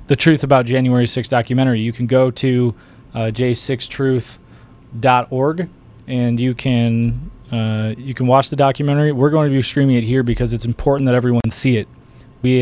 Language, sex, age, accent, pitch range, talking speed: English, male, 20-39, American, 120-130 Hz, 170 wpm